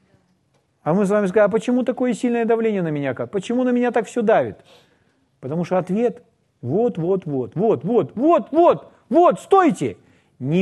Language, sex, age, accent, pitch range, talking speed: Russian, male, 40-59, native, 145-240 Hz, 175 wpm